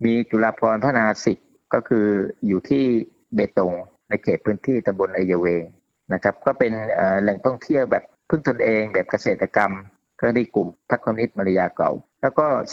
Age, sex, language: 60-79, male, Thai